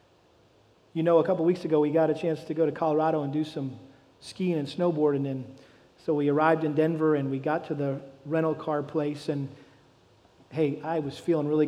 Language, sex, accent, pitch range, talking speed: English, male, American, 140-165 Hz, 215 wpm